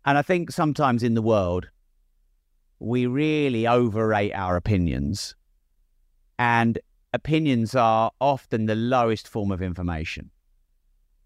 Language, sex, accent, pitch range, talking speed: English, male, British, 80-120 Hz, 110 wpm